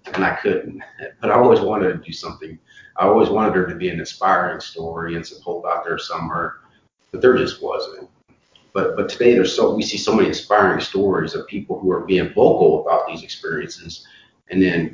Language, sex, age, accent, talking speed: English, male, 30-49, American, 205 wpm